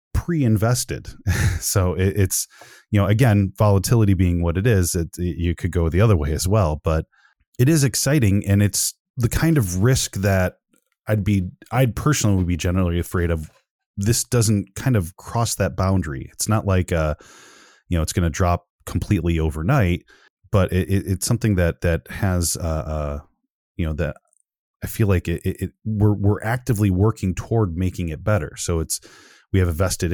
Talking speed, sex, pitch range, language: 185 wpm, male, 85-110 Hz, English